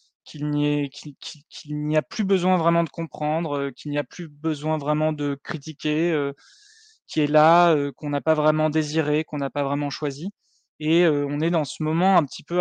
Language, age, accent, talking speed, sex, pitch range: French, 20-39, French, 220 wpm, male, 145-165 Hz